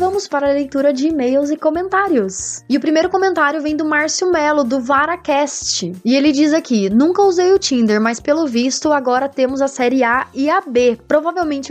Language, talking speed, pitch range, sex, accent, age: Portuguese, 195 wpm, 235-320 Hz, female, Brazilian, 20-39